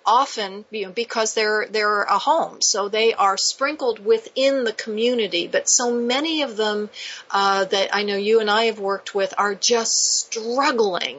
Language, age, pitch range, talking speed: English, 40-59, 195-260 Hz, 175 wpm